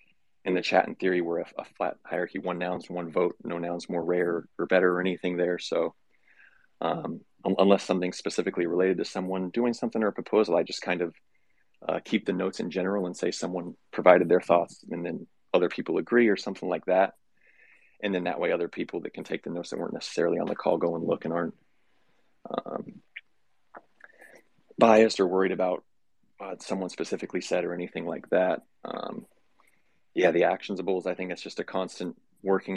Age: 30-49